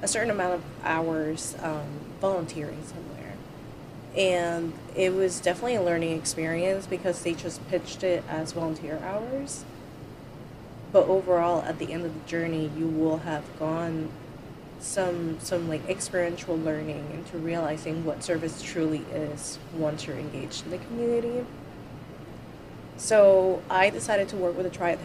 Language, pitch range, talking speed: English, 155-180 Hz, 145 wpm